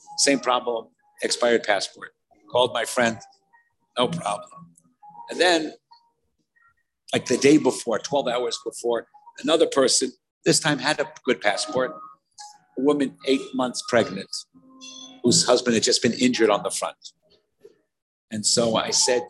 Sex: male